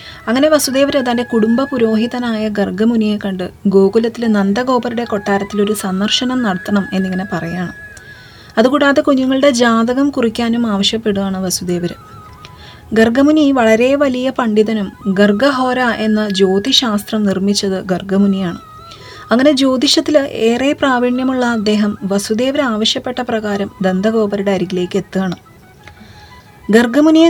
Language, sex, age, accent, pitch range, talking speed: Malayalam, female, 30-49, native, 200-255 Hz, 90 wpm